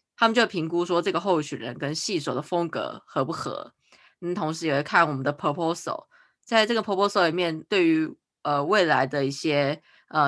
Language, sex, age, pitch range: Chinese, female, 20-39, 145-190 Hz